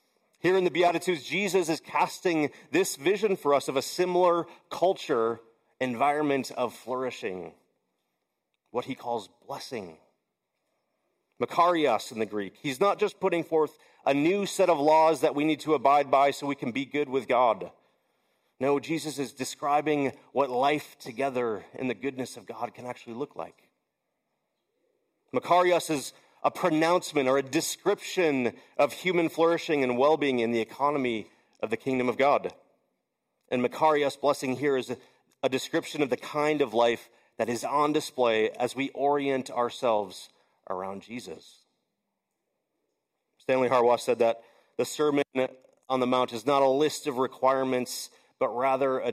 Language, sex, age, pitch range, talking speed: English, male, 40-59, 125-155 Hz, 155 wpm